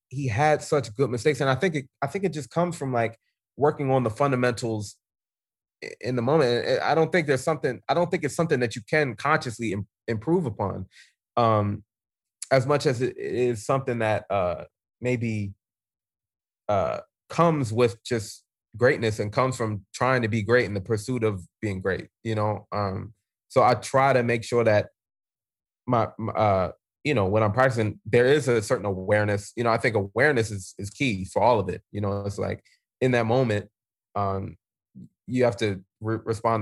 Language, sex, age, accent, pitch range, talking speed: English, male, 20-39, American, 105-130 Hz, 185 wpm